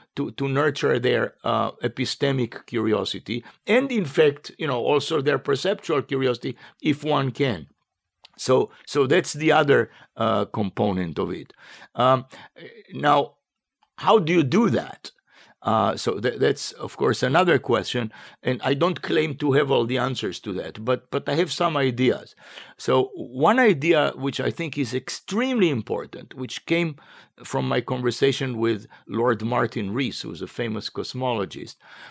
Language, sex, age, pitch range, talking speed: English, male, 50-69, 125-175 Hz, 155 wpm